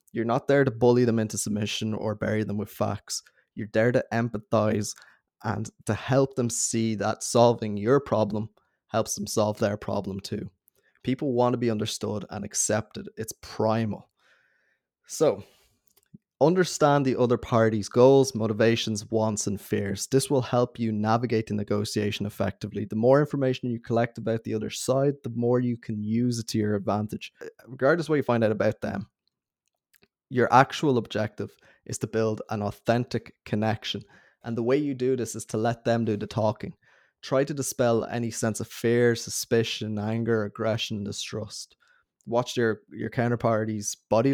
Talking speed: 165 wpm